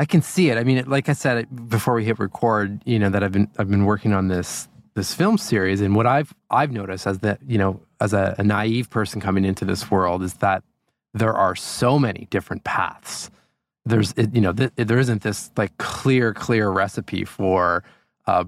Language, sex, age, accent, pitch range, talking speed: English, male, 20-39, American, 100-125 Hz, 220 wpm